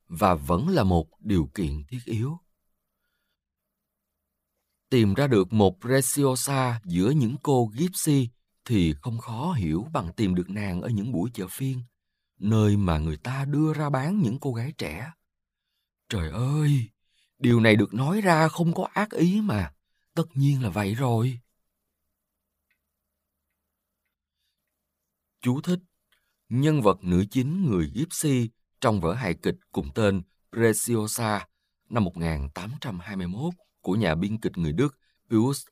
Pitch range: 85-130 Hz